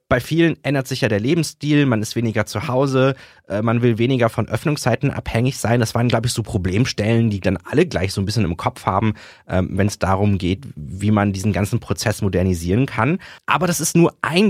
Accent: German